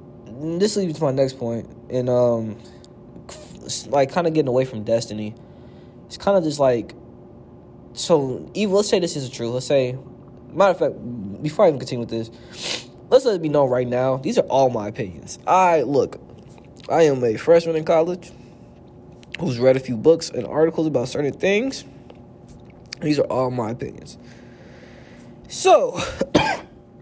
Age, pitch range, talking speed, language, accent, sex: 20-39, 115-155 Hz, 165 wpm, English, American, male